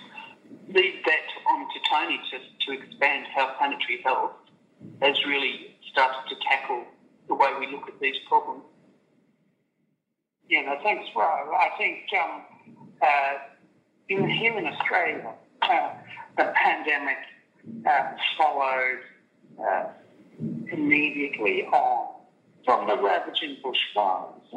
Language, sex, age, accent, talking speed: English, male, 50-69, British, 115 wpm